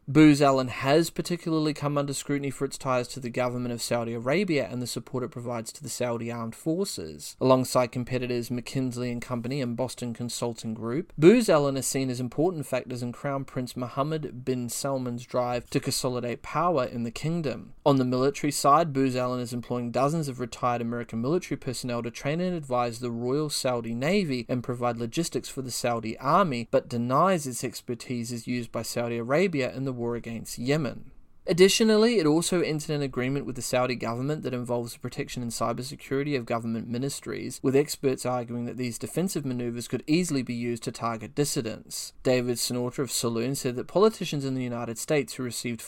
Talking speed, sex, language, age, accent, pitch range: 190 wpm, male, English, 20-39, Australian, 120-140 Hz